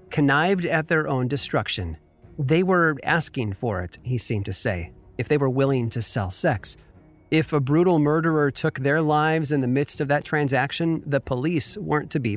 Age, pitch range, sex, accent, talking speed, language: 30-49, 120-150 Hz, male, American, 190 wpm, English